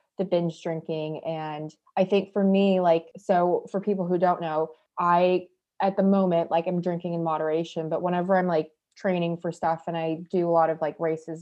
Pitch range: 165-195 Hz